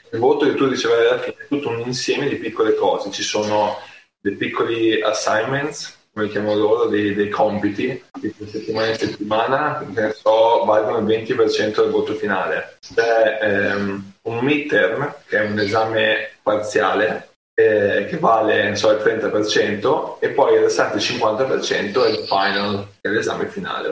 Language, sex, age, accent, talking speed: Italian, male, 20-39, native, 165 wpm